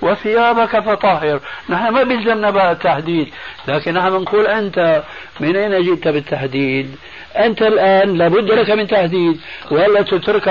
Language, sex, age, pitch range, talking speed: Arabic, male, 60-79, 155-200 Hz, 120 wpm